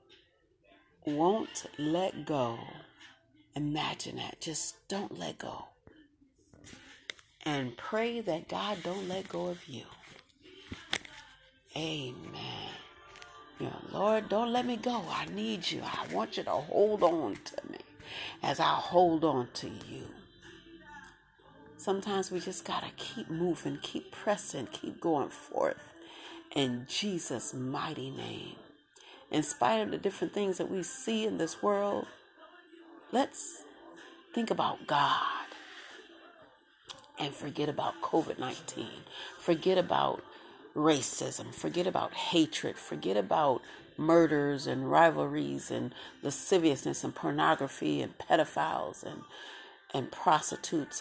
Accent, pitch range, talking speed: American, 150-215 Hz, 115 wpm